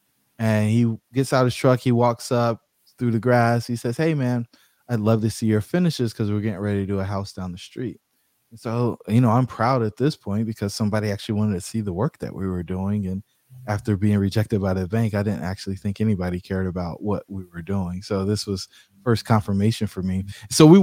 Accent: American